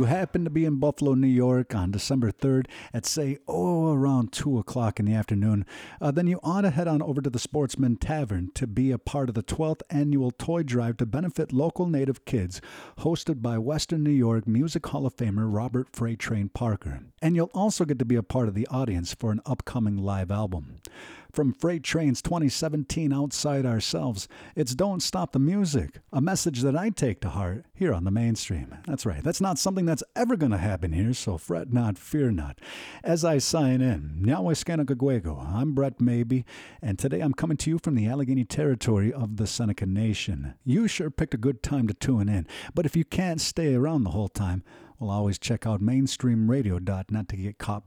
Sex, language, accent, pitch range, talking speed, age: male, English, American, 110-155 Hz, 200 wpm, 50-69